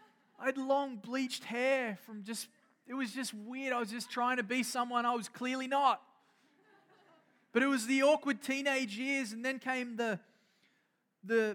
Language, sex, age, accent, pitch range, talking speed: English, male, 20-39, Australian, 185-240 Hz, 175 wpm